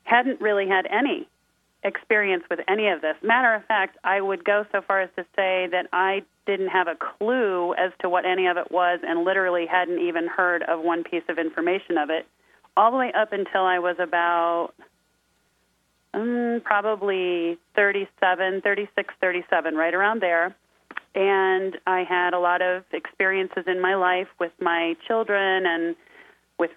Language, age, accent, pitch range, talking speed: English, 30-49, American, 175-200 Hz, 170 wpm